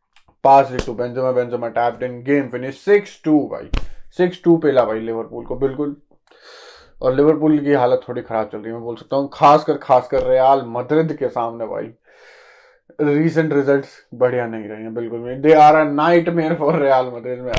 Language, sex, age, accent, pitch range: Hindi, male, 20-39, native, 130-170 Hz